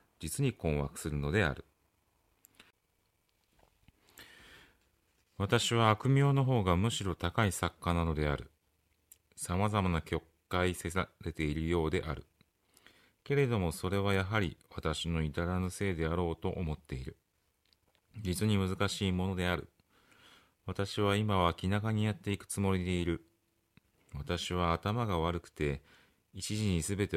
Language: Japanese